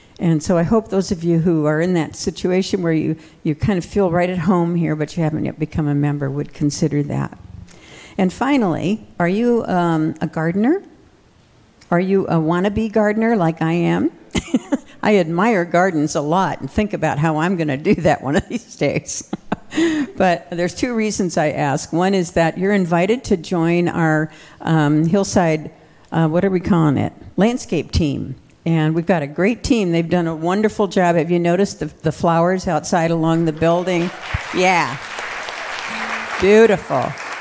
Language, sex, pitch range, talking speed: English, female, 155-190 Hz, 180 wpm